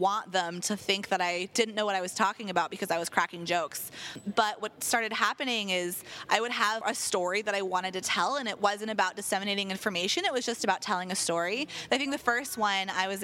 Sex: female